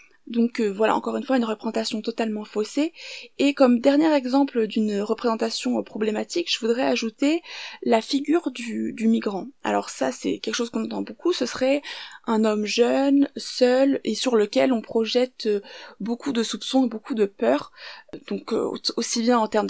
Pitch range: 220-265 Hz